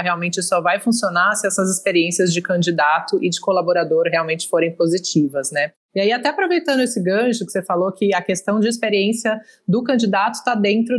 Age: 20-39